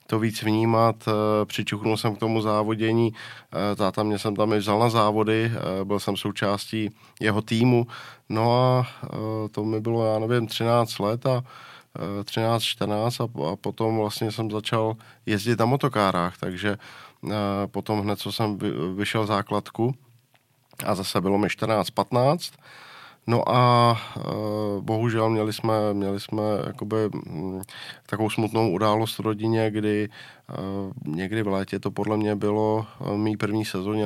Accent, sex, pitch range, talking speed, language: native, male, 100-110 Hz, 135 wpm, Czech